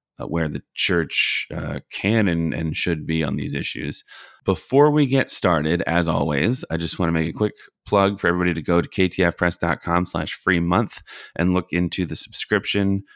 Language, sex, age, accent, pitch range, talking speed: English, male, 30-49, American, 80-95 Hz, 185 wpm